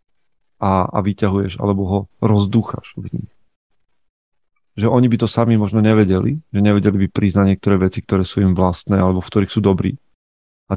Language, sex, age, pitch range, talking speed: Slovak, male, 30-49, 95-115 Hz, 160 wpm